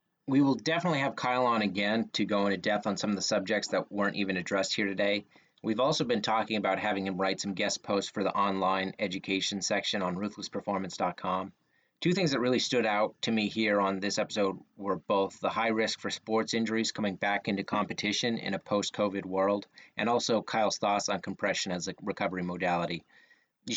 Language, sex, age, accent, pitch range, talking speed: English, male, 30-49, American, 95-110 Hz, 200 wpm